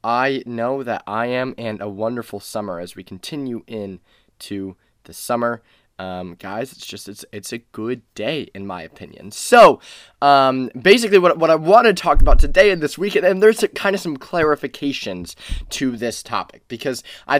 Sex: male